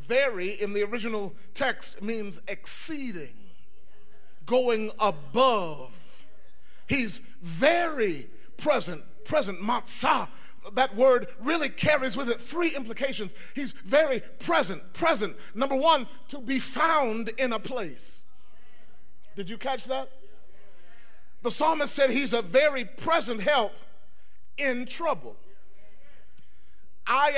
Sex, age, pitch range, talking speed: male, 30-49, 215-300 Hz, 105 wpm